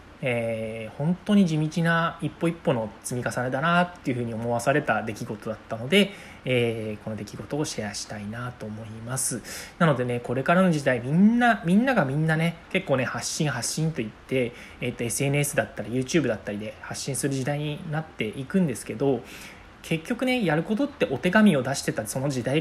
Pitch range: 115-165 Hz